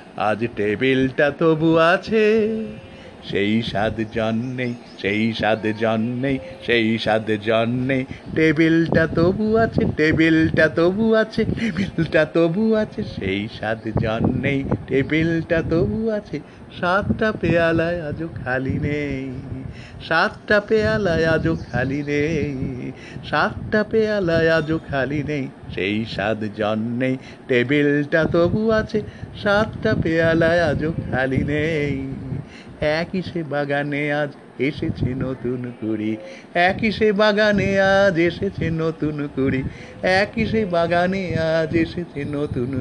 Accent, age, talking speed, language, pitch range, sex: native, 50-69, 100 wpm, Bengali, 125-170 Hz, male